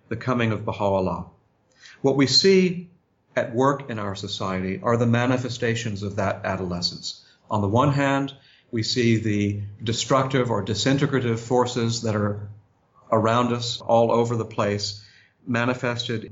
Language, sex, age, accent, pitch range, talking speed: English, male, 50-69, American, 110-130 Hz, 140 wpm